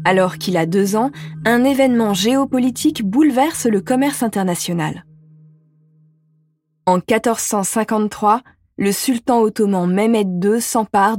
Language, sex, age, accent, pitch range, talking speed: French, female, 20-39, French, 175-230 Hz, 105 wpm